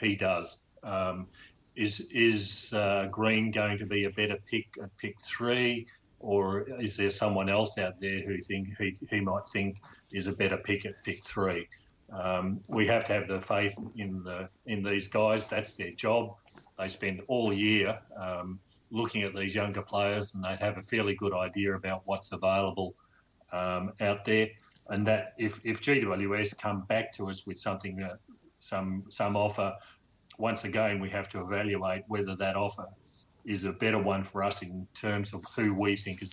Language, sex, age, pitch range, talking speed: English, male, 40-59, 95-105 Hz, 185 wpm